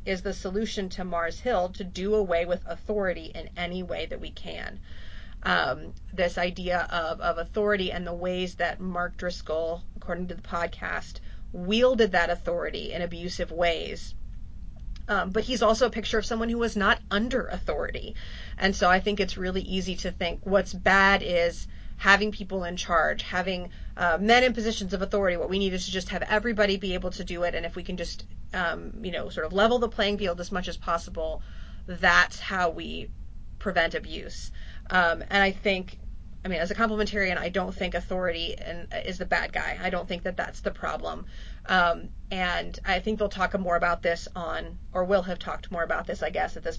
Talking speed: 200 wpm